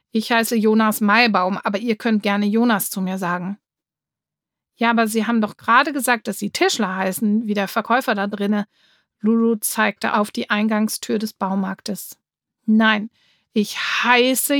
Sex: female